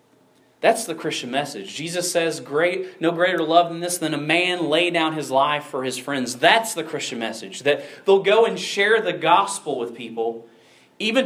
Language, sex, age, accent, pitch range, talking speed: English, male, 30-49, American, 130-175 Hz, 190 wpm